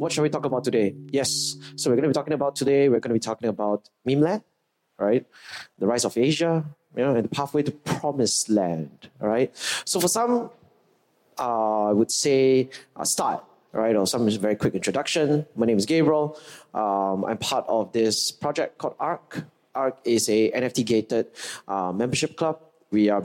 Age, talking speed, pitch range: 20-39, 190 wpm, 110-150 Hz